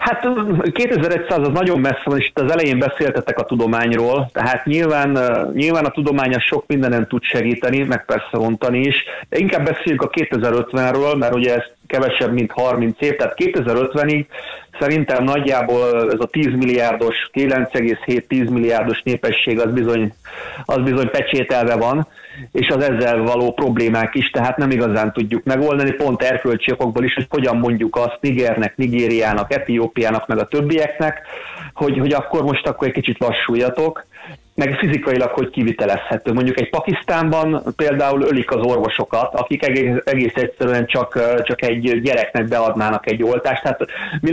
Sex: male